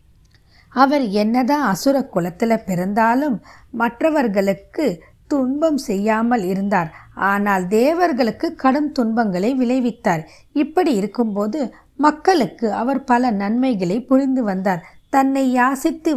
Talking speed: 90 wpm